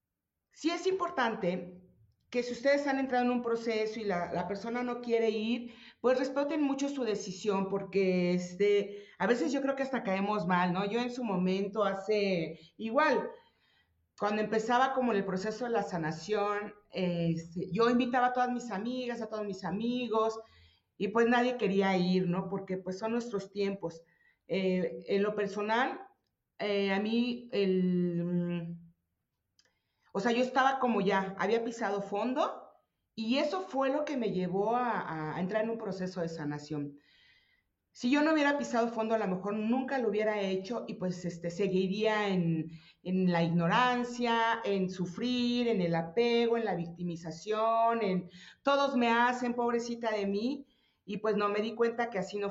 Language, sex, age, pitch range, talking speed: Spanish, female, 40-59, 185-240 Hz, 165 wpm